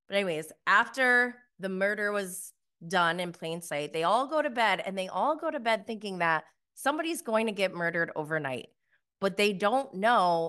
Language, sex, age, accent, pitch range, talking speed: English, female, 20-39, American, 170-220 Hz, 190 wpm